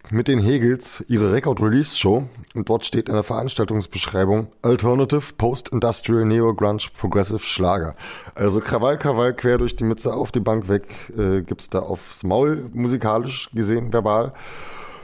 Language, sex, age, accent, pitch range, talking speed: German, male, 30-49, German, 100-120 Hz, 140 wpm